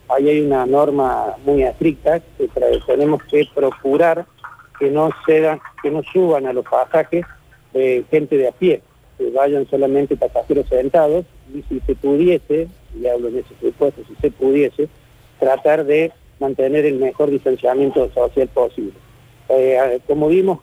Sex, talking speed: male, 155 wpm